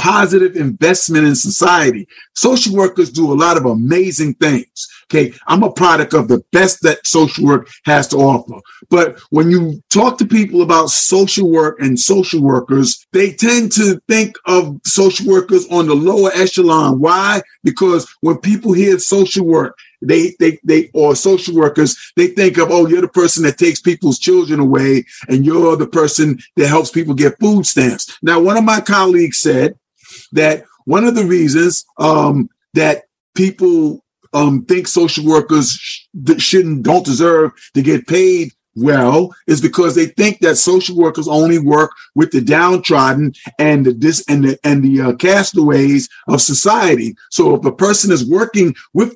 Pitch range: 150-190 Hz